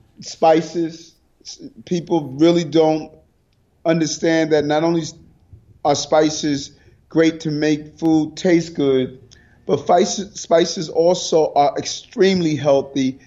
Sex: male